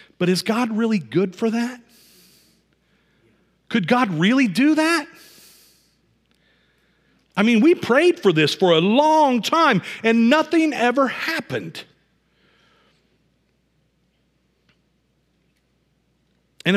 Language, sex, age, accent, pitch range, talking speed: English, male, 40-59, American, 140-225 Hz, 95 wpm